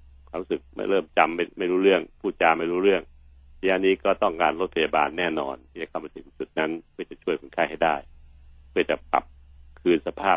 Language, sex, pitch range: Thai, male, 70-80 Hz